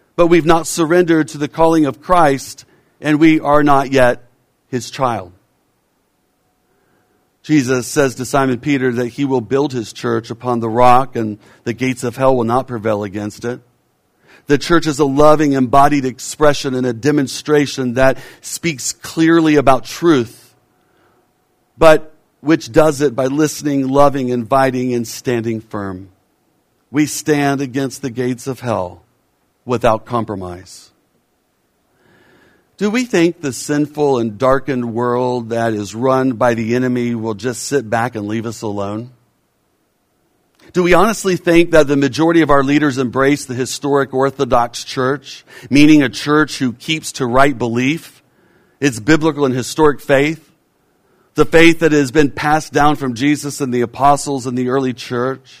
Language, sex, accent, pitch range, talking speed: English, male, American, 120-150 Hz, 150 wpm